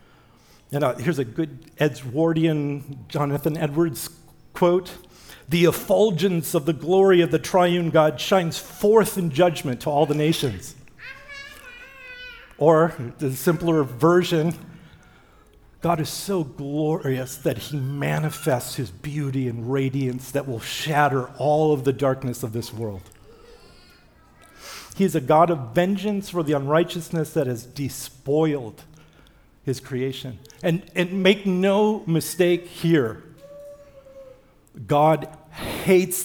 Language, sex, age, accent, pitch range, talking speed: English, male, 50-69, American, 135-175 Hz, 120 wpm